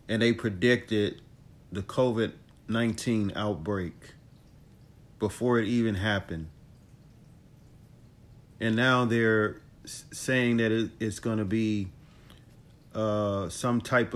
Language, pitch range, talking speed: English, 105-125 Hz, 95 wpm